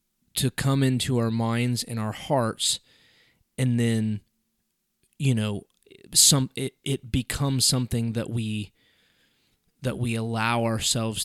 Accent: American